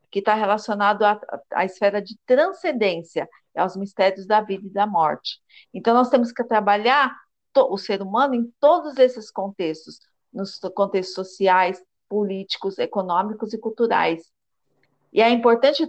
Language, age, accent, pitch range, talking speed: Portuguese, 50-69, Brazilian, 195-245 Hz, 140 wpm